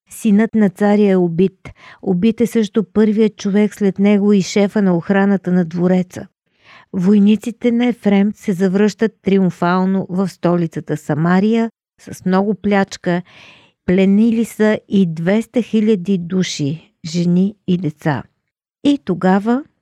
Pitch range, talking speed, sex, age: 175-215 Hz, 125 wpm, female, 50-69